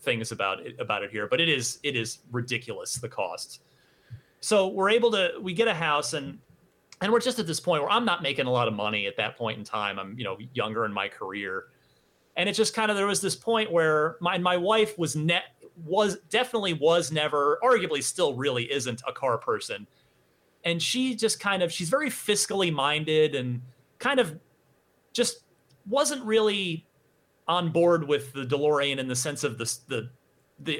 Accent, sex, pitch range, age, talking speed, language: American, male, 130-210 Hz, 30-49, 200 wpm, English